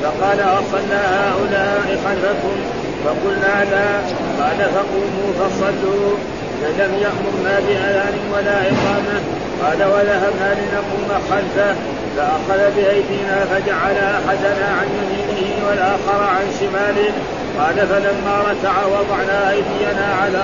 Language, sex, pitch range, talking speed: Arabic, male, 195-200 Hz, 95 wpm